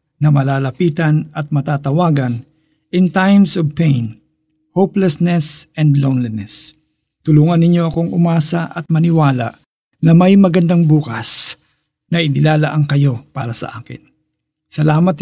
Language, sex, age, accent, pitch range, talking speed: Filipino, male, 50-69, native, 145-175 Hz, 115 wpm